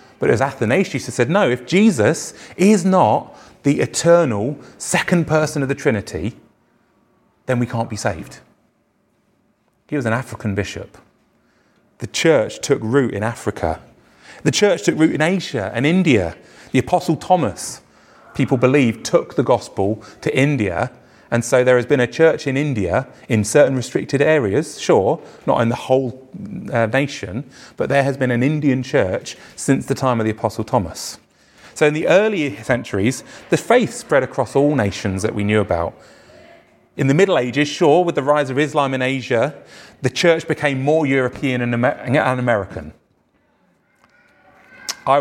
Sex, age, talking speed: male, 30-49, 160 wpm